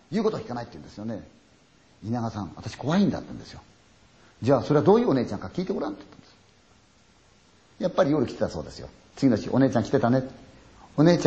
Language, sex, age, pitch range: Chinese, male, 50-69, 105-140 Hz